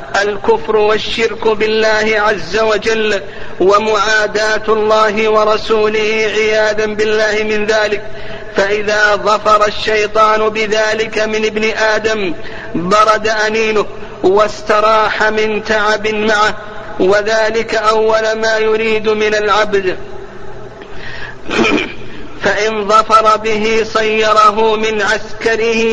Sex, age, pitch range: male, 50-69, 210-220 Hz